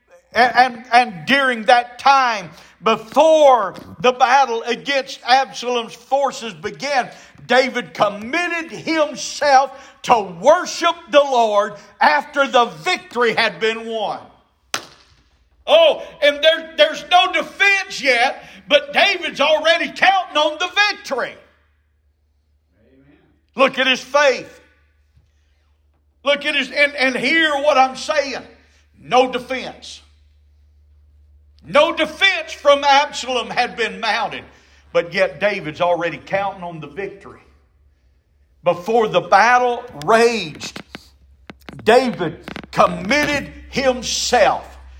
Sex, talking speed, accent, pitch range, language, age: male, 105 wpm, American, 190-280 Hz, English, 50-69